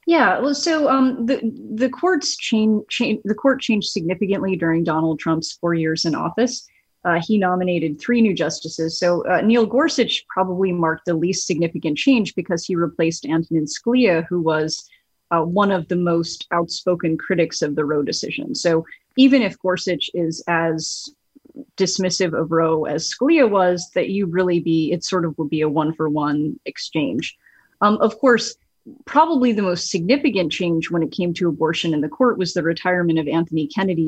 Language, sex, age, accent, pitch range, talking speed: English, female, 30-49, American, 160-205 Hz, 180 wpm